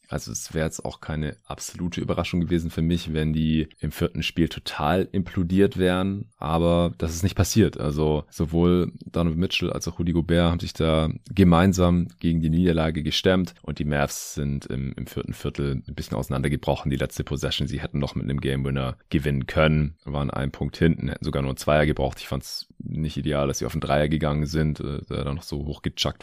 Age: 30-49